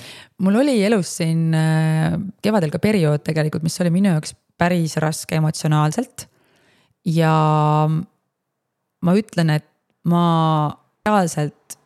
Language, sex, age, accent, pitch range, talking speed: English, female, 20-39, Finnish, 150-190 Hz, 105 wpm